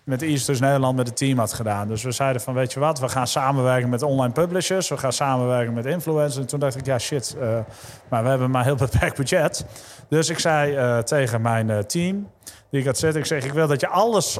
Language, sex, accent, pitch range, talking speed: Dutch, male, Dutch, 125-155 Hz, 250 wpm